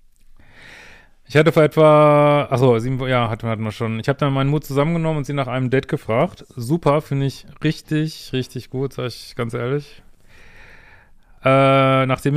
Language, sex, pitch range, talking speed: German, male, 115-140 Hz, 160 wpm